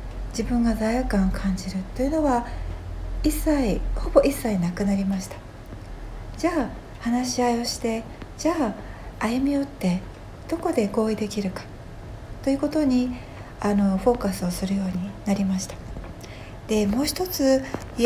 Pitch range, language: 190-275 Hz, Japanese